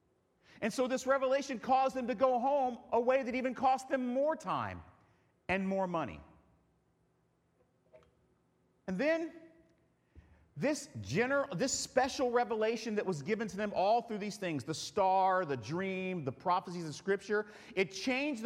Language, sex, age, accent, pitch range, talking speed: English, male, 40-59, American, 170-255 Hz, 150 wpm